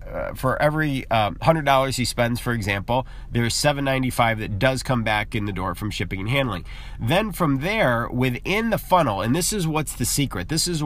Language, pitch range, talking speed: English, 110-140 Hz, 200 wpm